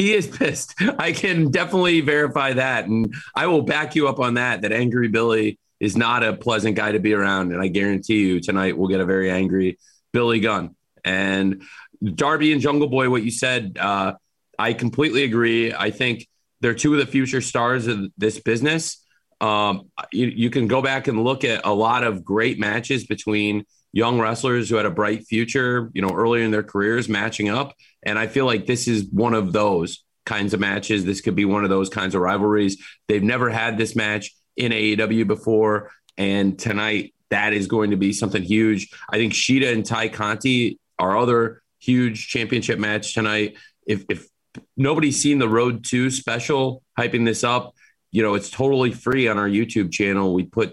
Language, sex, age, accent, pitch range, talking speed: English, male, 30-49, American, 105-125 Hz, 195 wpm